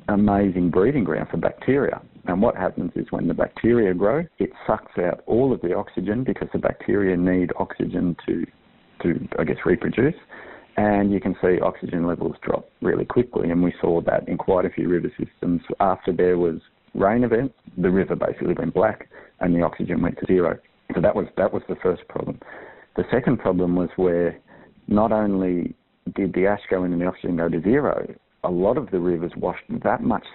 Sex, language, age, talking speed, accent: male, English, 50-69, 195 wpm, Australian